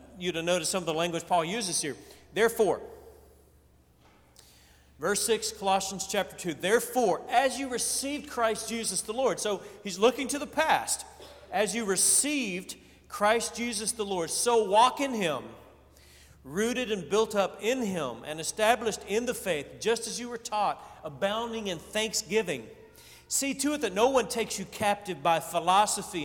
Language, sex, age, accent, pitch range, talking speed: English, male, 40-59, American, 170-230 Hz, 160 wpm